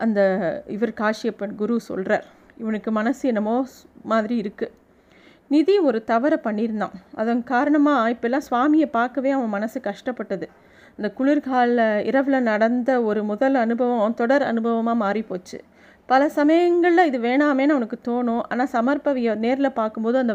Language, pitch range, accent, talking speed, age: Tamil, 220-275 Hz, native, 130 wpm, 30-49